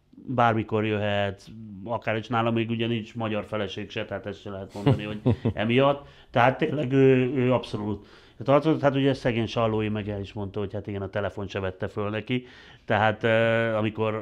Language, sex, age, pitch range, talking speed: Hungarian, male, 30-49, 105-120 Hz, 175 wpm